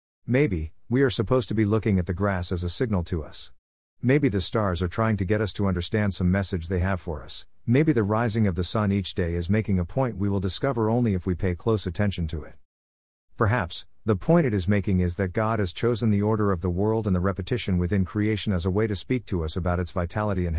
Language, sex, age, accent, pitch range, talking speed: English, male, 50-69, American, 90-110 Hz, 250 wpm